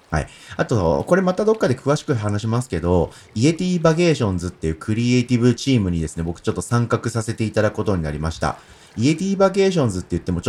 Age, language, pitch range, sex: 30-49, Japanese, 90-130 Hz, male